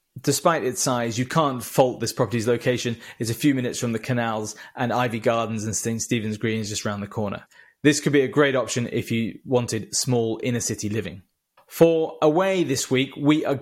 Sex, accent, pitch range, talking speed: male, British, 120-155 Hz, 205 wpm